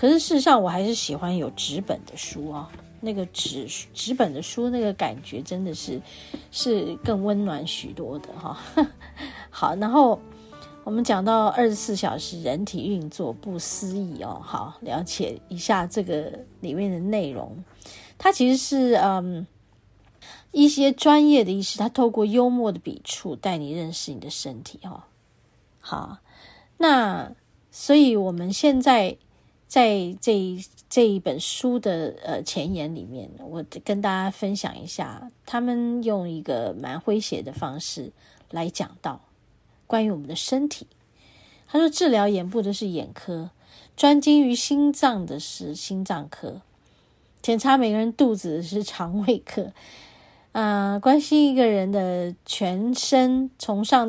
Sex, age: female, 30-49